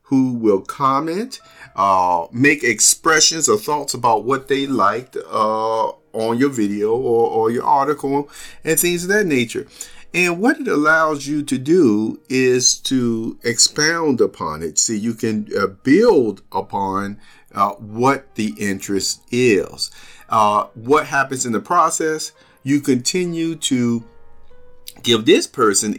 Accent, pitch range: American, 110-160 Hz